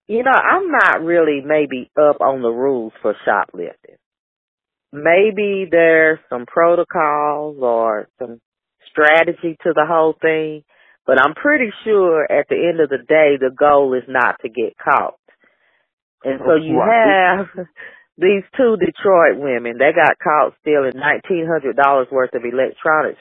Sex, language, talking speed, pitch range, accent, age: female, English, 145 wpm, 140-180 Hz, American, 40-59